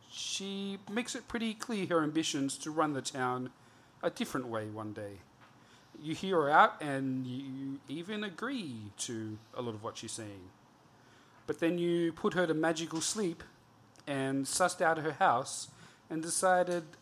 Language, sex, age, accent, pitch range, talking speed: English, male, 40-59, Australian, 120-165 Hz, 160 wpm